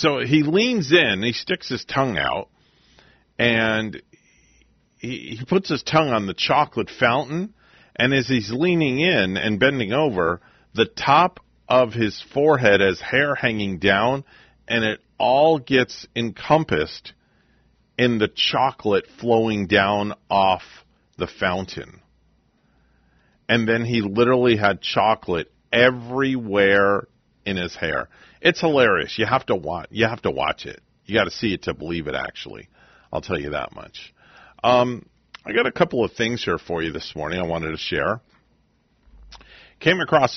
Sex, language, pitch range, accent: male, English, 95-125 Hz, American